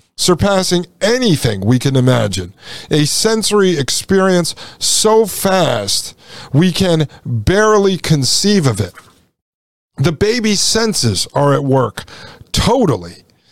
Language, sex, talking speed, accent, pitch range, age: English, male, 100 wpm, American, 130-190 Hz, 50-69